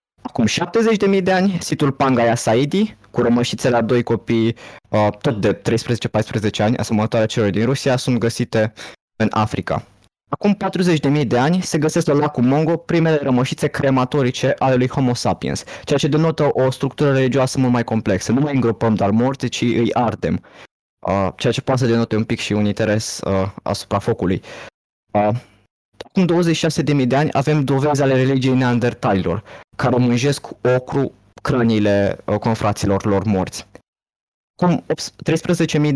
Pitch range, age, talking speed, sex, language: 110-145 Hz, 20-39, 155 wpm, male, Romanian